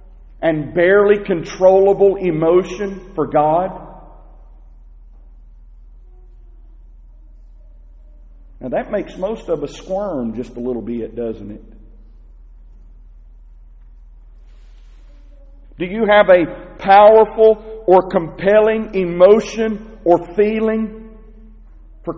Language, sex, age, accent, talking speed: English, male, 50-69, American, 80 wpm